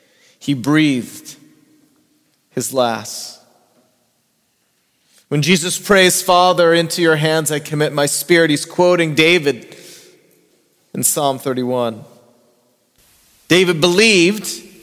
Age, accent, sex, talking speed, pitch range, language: 30-49, American, male, 95 wpm, 140-185 Hz, English